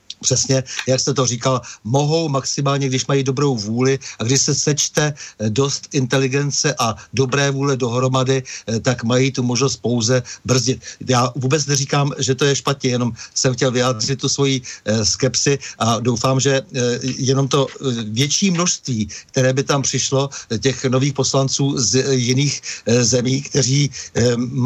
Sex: male